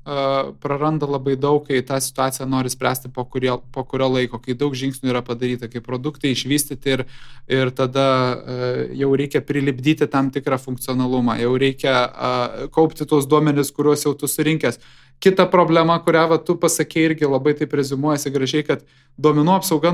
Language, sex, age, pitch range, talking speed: English, male, 20-39, 130-160 Hz, 165 wpm